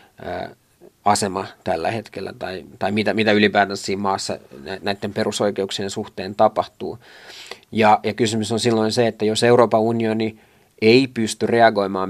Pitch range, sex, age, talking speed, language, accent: 100-110 Hz, male, 30-49, 135 wpm, Finnish, native